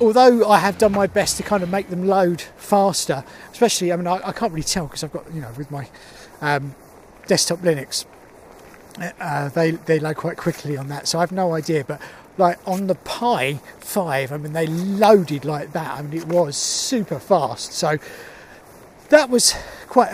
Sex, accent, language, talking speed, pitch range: male, British, English, 200 wpm, 165-215 Hz